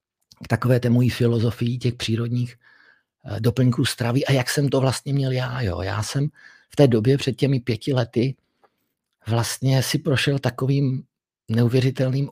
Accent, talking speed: native, 145 wpm